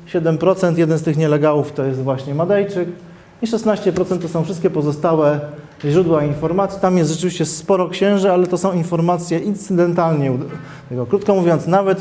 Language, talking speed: Polish, 155 wpm